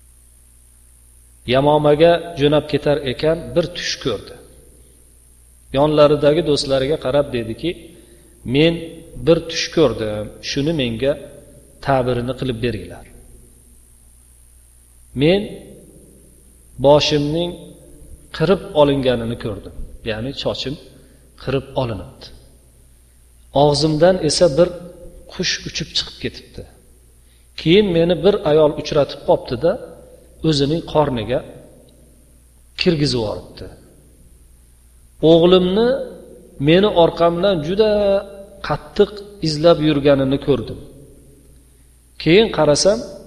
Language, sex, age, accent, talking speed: English, male, 40-59, Turkish, 75 wpm